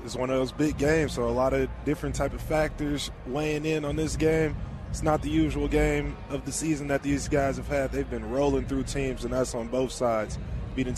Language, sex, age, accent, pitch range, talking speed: English, male, 20-39, American, 130-165 Hz, 235 wpm